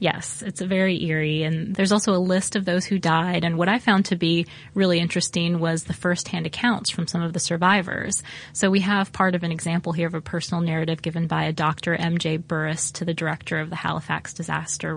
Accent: American